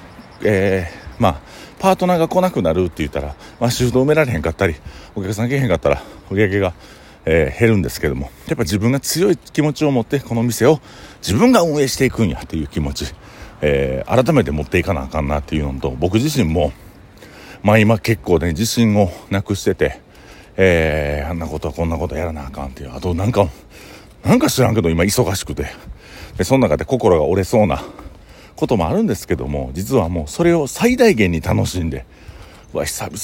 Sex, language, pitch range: male, Japanese, 80-115 Hz